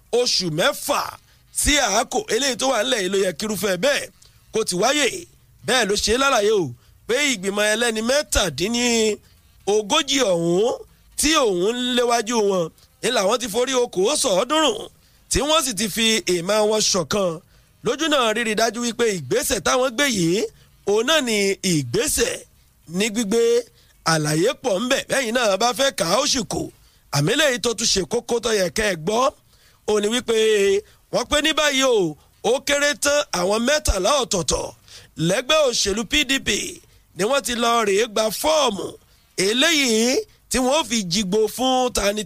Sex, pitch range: male, 195-275 Hz